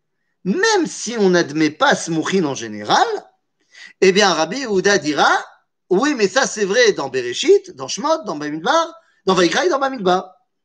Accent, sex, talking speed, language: French, male, 165 wpm, French